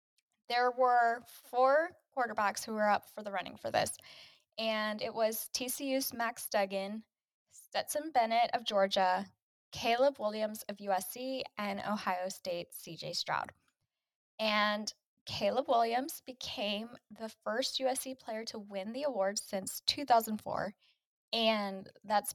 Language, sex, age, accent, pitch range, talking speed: English, female, 10-29, American, 185-235 Hz, 125 wpm